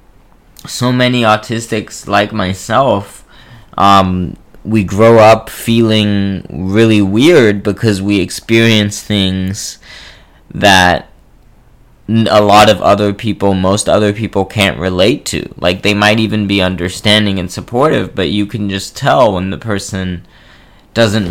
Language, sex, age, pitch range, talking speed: English, male, 20-39, 90-105 Hz, 125 wpm